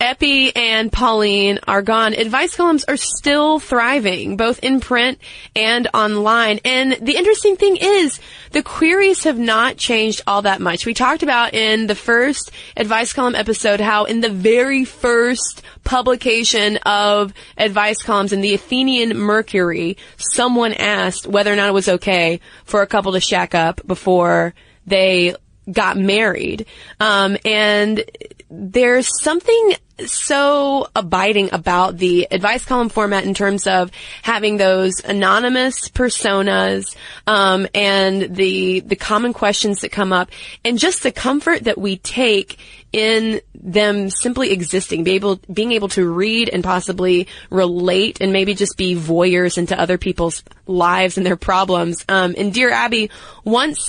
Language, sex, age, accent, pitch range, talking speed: English, female, 20-39, American, 190-240 Hz, 145 wpm